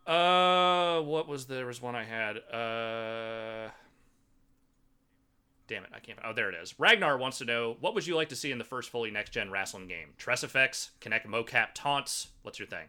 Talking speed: 195 wpm